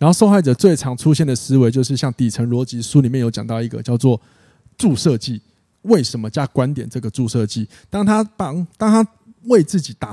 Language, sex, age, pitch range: Chinese, male, 20-39, 120-170 Hz